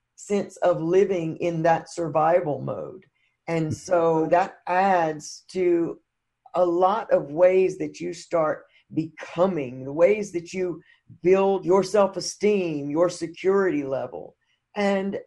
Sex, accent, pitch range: female, American, 160-195 Hz